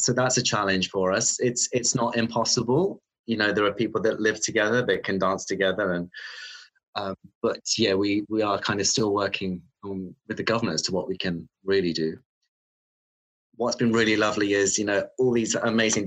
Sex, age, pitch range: male, 20-39, 95-115 Hz